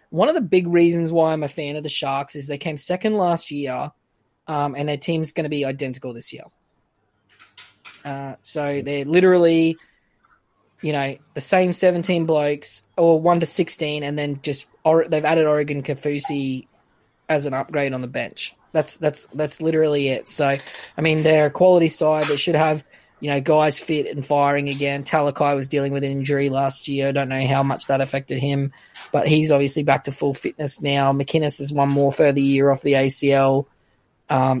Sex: male